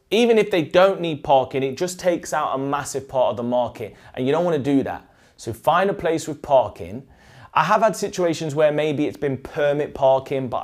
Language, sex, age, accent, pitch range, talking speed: English, male, 30-49, British, 115-145 Hz, 225 wpm